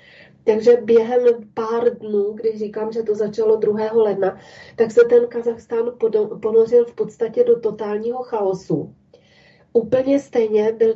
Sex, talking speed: female, 130 wpm